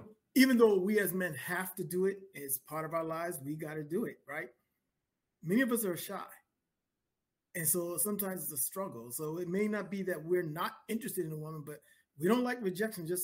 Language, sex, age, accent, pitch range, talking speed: English, male, 30-49, American, 150-195 Hz, 220 wpm